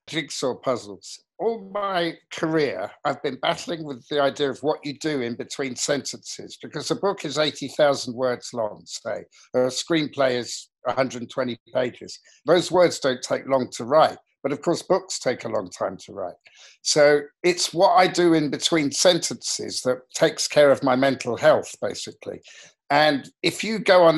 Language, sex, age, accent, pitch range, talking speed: English, male, 50-69, British, 125-165 Hz, 170 wpm